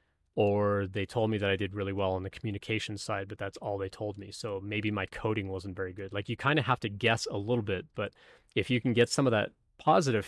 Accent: American